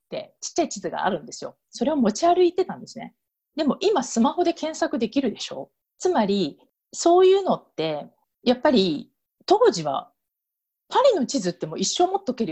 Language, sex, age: Japanese, female, 40-59